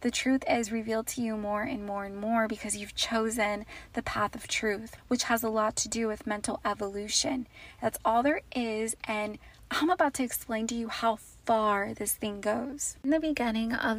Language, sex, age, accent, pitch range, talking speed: English, female, 20-39, American, 215-245 Hz, 200 wpm